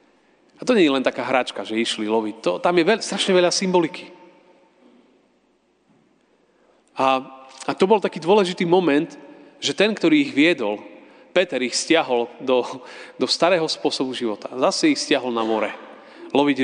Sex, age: male, 40-59